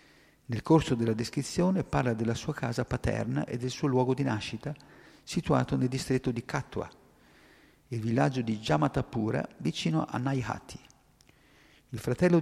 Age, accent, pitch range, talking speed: 50-69, native, 115-145 Hz, 140 wpm